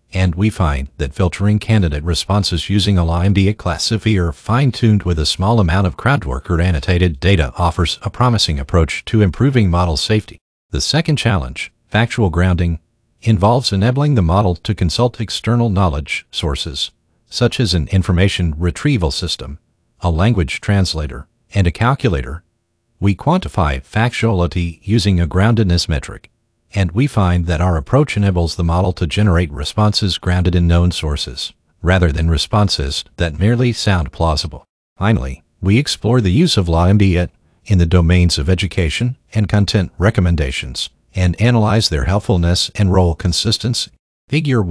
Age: 50-69